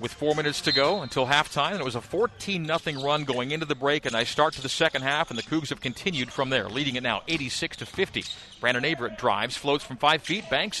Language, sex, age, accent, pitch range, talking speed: English, male, 40-59, American, 125-165 Hz, 245 wpm